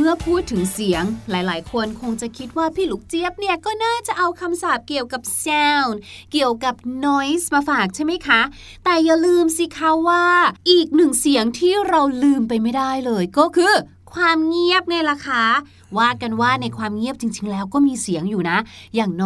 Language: Thai